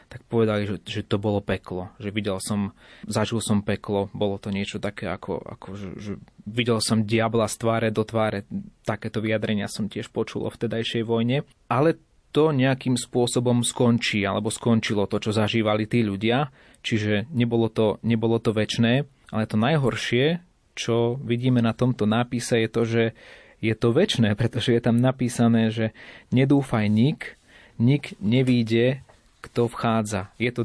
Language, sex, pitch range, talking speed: Slovak, male, 110-120 Hz, 155 wpm